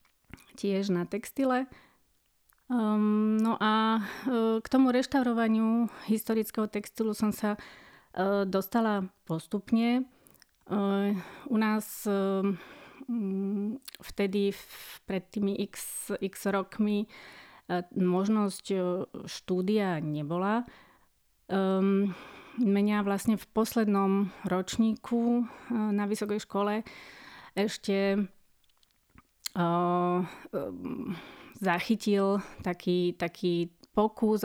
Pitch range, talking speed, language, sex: 180-215 Hz, 65 wpm, Slovak, female